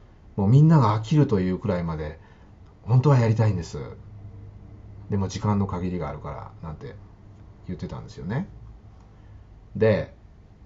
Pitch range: 85-110 Hz